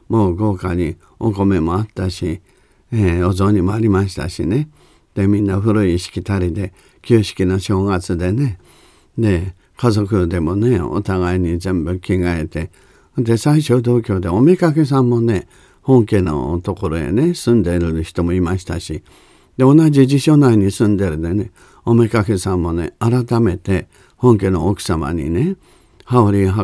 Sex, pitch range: male, 90-115 Hz